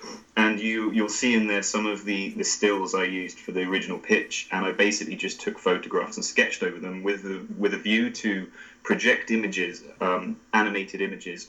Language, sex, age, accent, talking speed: English, male, 30-49, British, 200 wpm